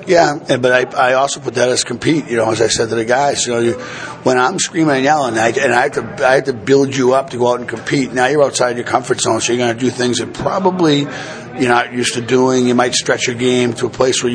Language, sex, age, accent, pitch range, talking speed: English, male, 50-69, American, 120-135 Hz, 290 wpm